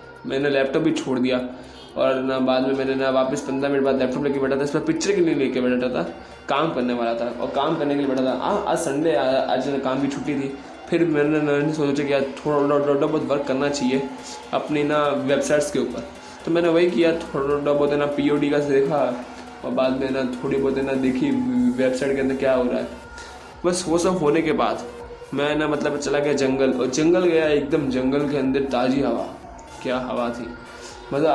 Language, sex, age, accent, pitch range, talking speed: Hindi, male, 20-39, native, 130-150 Hz, 225 wpm